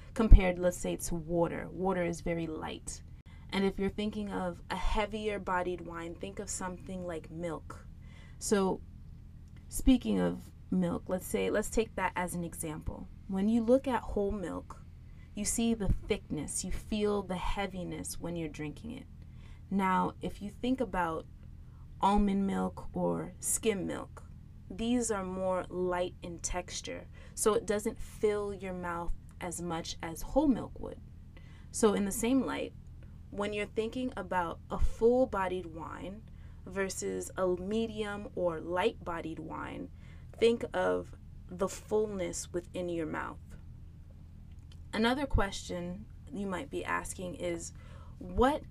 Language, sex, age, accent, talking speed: English, female, 20-39, American, 140 wpm